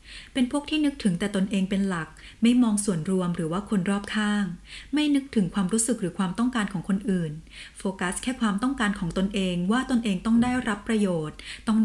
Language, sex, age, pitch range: Thai, female, 20-39, 185-235 Hz